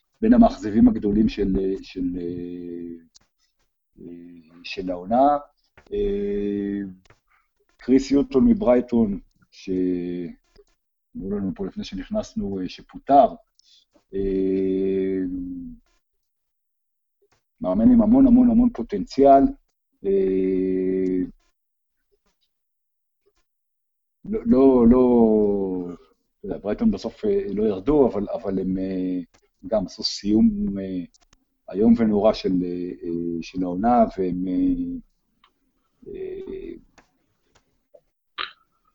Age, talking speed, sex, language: 50-69, 70 wpm, male, Hebrew